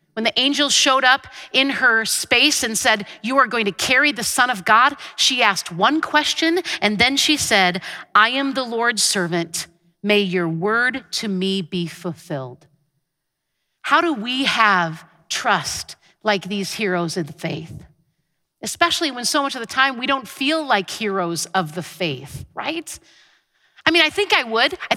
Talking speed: 180 wpm